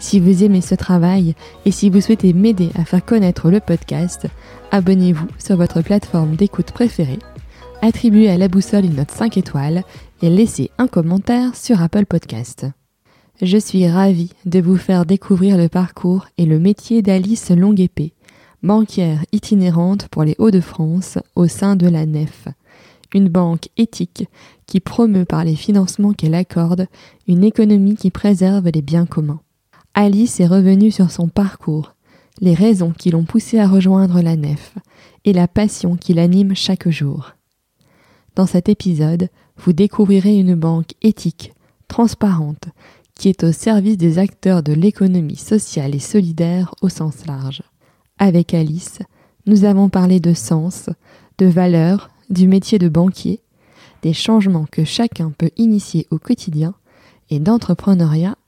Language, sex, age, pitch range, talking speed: French, female, 20-39, 165-200 Hz, 150 wpm